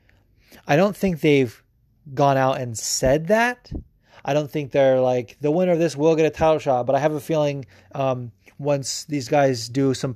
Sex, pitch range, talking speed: male, 120-145 Hz, 200 wpm